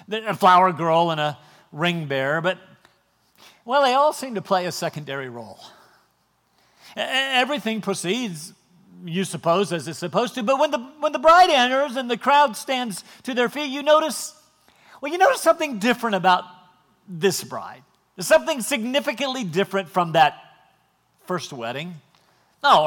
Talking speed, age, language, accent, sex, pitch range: 150 wpm, 50-69, French, American, male, 185-265 Hz